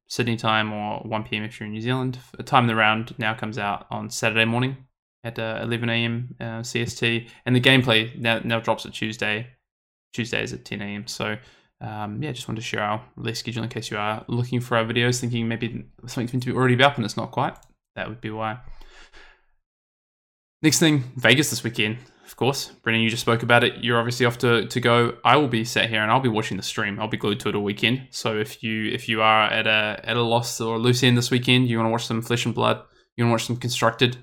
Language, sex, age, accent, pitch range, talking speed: English, male, 20-39, Australian, 110-120 Hz, 245 wpm